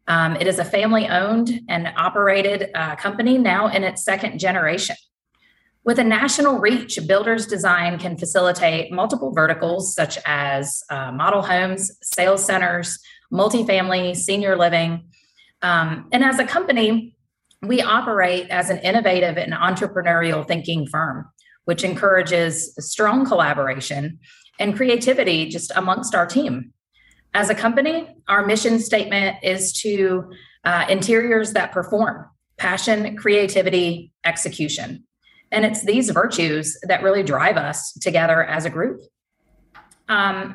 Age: 30-49